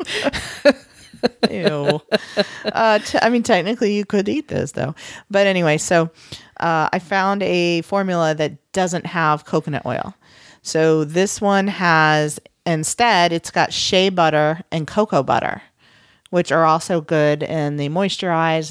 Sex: female